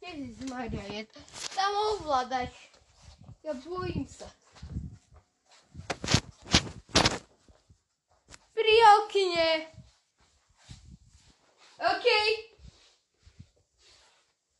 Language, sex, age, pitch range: Slovak, female, 10-29, 285-385 Hz